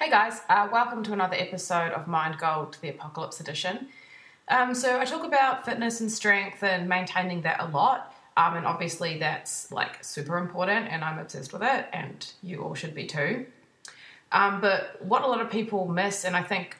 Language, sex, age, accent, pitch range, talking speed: English, female, 20-39, Australian, 160-205 Hz, 195 wpm